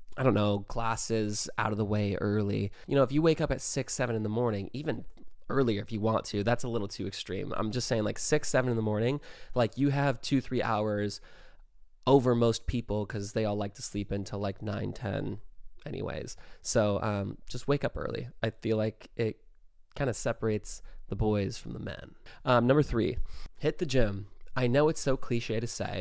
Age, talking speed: 20-39, 210 wpm